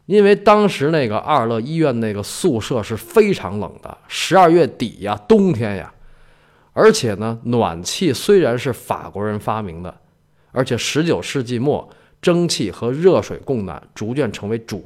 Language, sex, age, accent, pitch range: Chinese, male, 20-39, native, 105-155 Hz